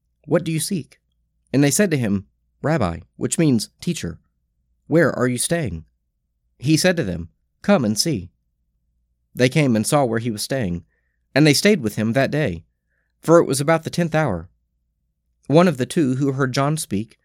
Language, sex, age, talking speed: English, male, 30-49, 190 wpm